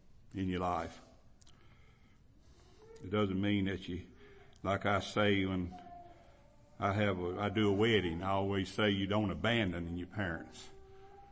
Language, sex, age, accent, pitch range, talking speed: English, male, 60-79, American, 100-120 Hz, 145 wpm